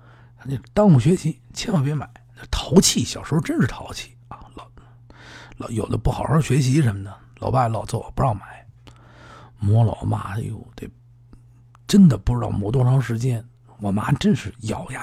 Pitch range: 110-130 Hz